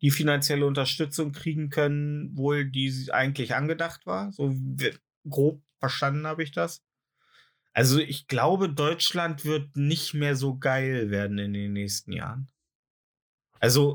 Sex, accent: male, German